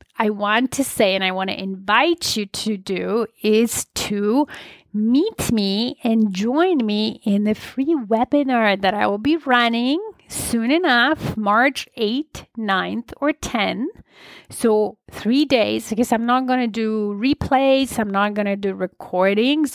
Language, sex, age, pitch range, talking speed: English, female, 30-49, 205-260 Hz, 155 wpm